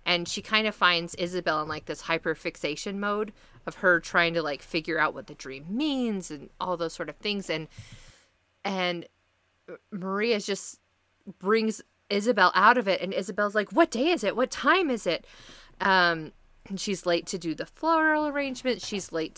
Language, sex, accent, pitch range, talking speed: English, female, American, 165-215 Hz, 185 wpm